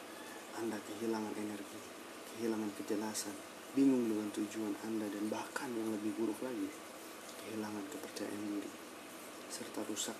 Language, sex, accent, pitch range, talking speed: Indonesian, male, native, 105-115 Hz, 120 wpm